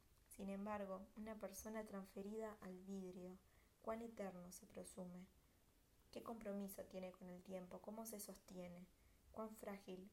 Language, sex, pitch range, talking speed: Spanish, female, 185-205 Hz, 130 wpm